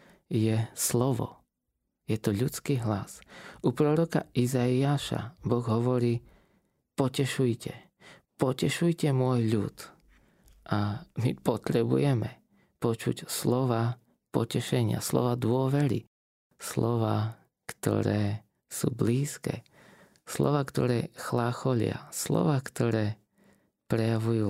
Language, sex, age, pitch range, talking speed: Slovak, male, 20-39, 110-140 Hz, 80 wpm